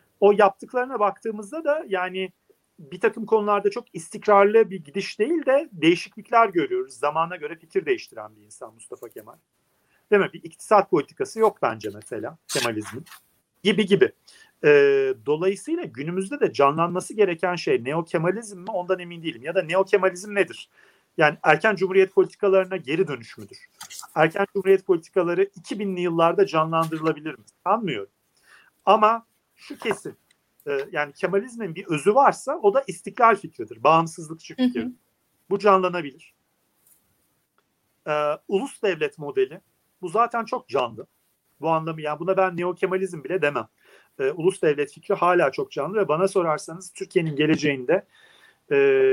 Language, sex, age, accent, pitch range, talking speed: Turkish, male, 40-59, native, 165-225 Hz, 140 wpm